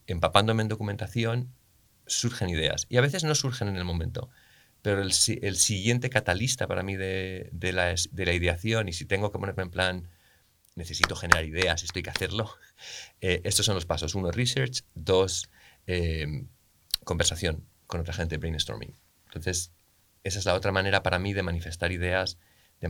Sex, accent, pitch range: male, Spanish, 85-105 Hz